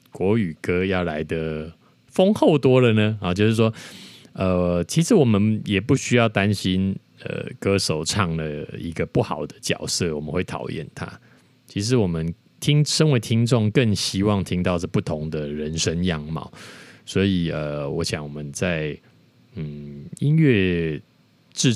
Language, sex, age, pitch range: Chinese, male, 20-39, 80-110 Hz